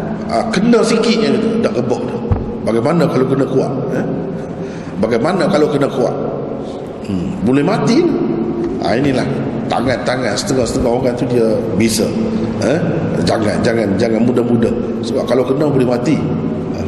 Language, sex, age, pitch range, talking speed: Malay, male, 50-69, 110-145 Hz, 130 wpm